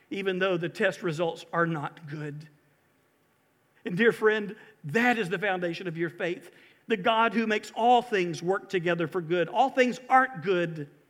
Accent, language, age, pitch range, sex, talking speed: American, English, 50-69, 160-215 Hz, male, 175 wpm